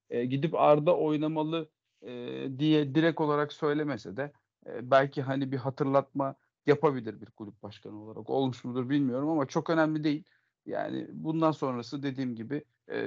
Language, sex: Turkish, male